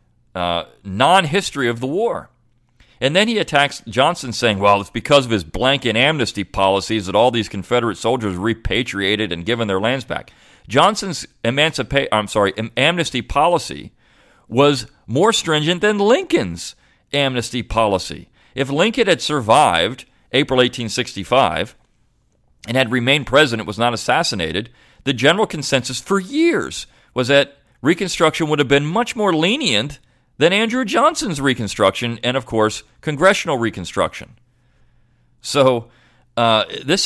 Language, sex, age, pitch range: English, male, 40-59, 110-145 Hz